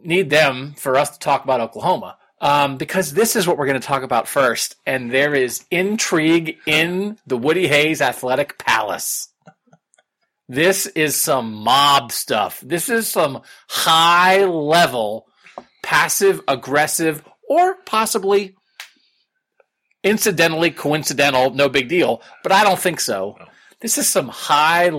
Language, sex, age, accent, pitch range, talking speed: English, male, 40-59, American, 130-180 Hz, 135 wpm